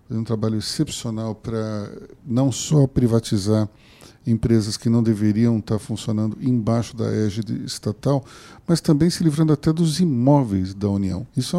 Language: Portuguese